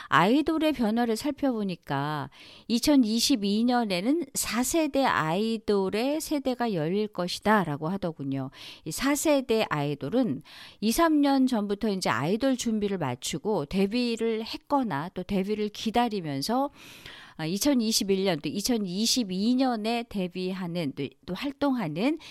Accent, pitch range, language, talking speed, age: Korean, 175-260 Hz, English, 85 wpm, 40-59